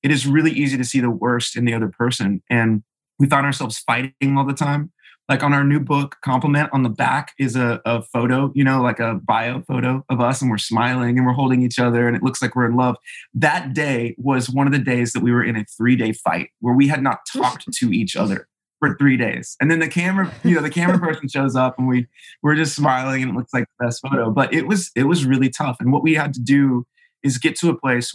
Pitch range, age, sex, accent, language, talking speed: 115-140 Hz, 20-39, male, American, English, 260 wpm